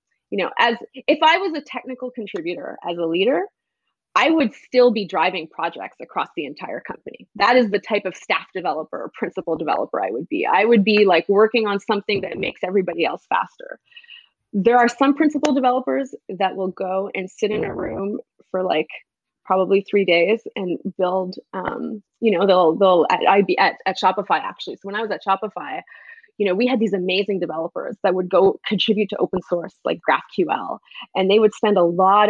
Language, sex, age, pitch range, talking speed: English, female, 20-39, 185-235 Hz, 195 wpm